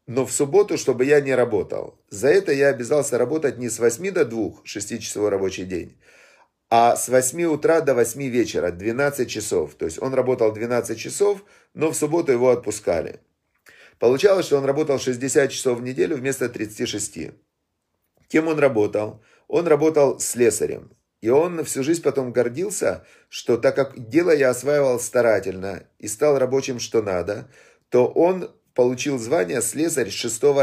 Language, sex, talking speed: Russian, male, 160 wpm